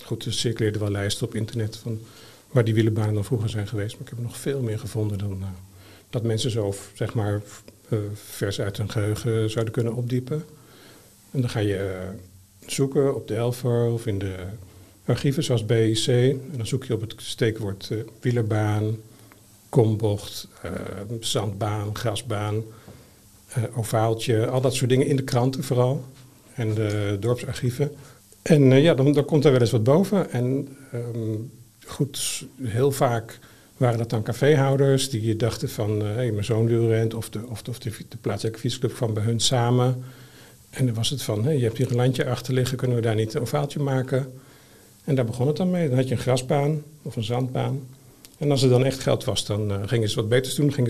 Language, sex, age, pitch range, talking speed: Dutch, male, 50-69, 110-135 Hz, 200 wpm